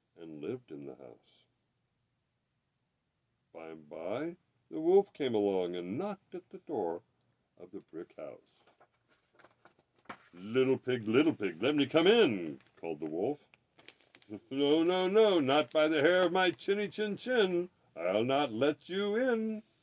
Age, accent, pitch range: 60-79, American, 115-195 Hz